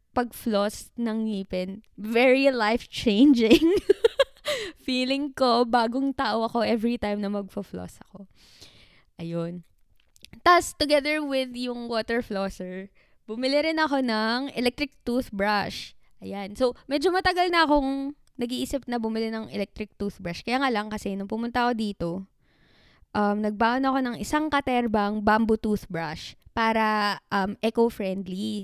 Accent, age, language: native, 20-39, Filipino